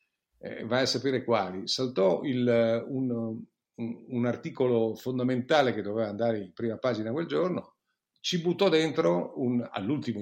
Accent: native